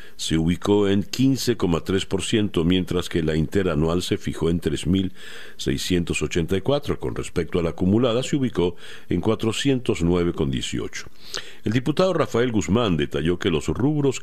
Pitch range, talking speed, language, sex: 80-115 Hz, 120 wpm, Spanish, male